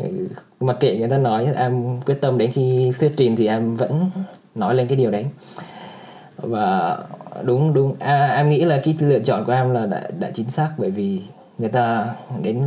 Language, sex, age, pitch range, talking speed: Vietnamese, male, 20-39, 115-145 Hz, 200 wpm